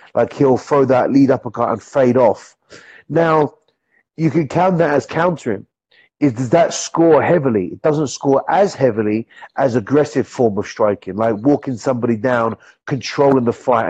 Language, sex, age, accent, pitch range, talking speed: English, male, 30-49, British, 115-150 Hz, 165 wpm